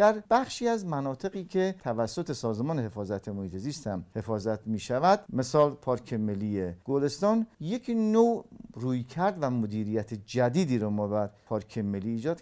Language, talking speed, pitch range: Persian, 140 wpm, 110-180 Hz